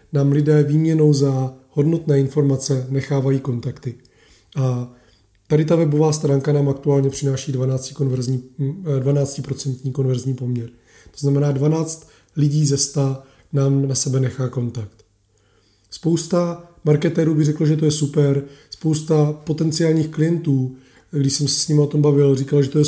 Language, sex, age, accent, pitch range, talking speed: Czech, male, 20-39, native, 135-150 Hz, 145 wpm